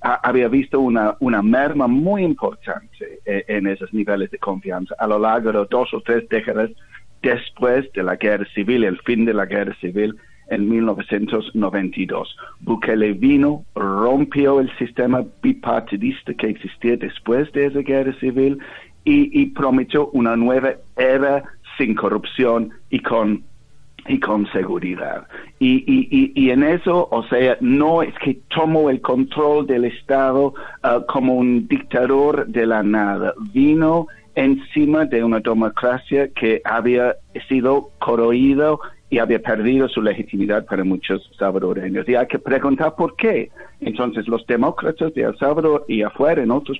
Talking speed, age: 145 wpm, 60-79